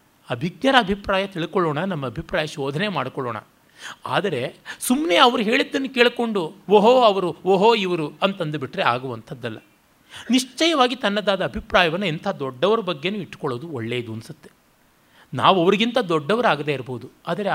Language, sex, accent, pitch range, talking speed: Kannada, male, native, 160-225 Hz, 110 wpm